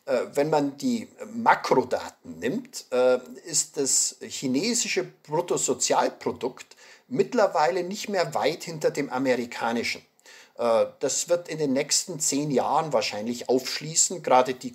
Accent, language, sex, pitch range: German, German, male, 130-220 Hz